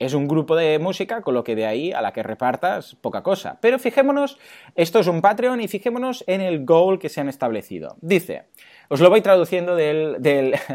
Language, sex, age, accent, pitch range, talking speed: Spanish, male, 20-39, Spanish, 125-180 Hz, 205 wpm